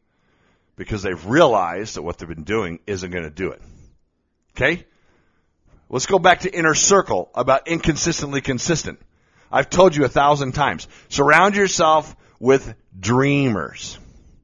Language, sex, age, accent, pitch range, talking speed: English, male, 50-69, American, 110-170 Hz, 135 wpm